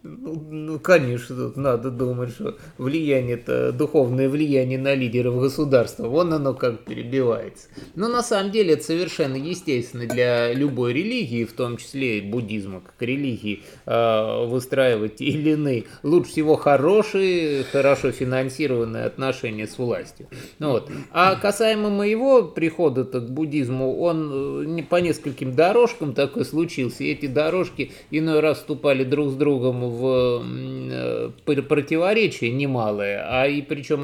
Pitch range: 125-155 Hz